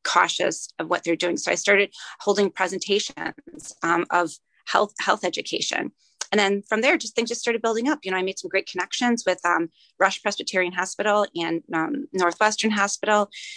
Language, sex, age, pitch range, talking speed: English, female, 30-49, 175-215 Hz, 180 wpm